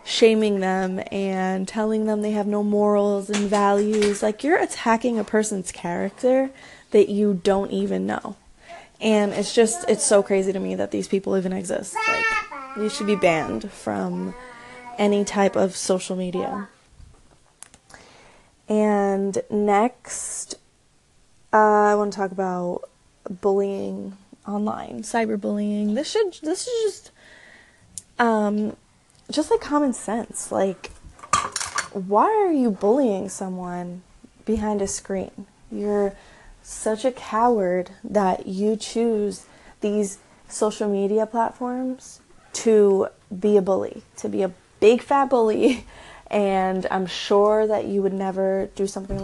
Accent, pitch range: American, 195-225 Hz